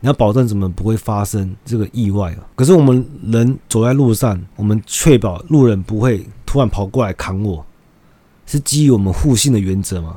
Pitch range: 100-130 Hz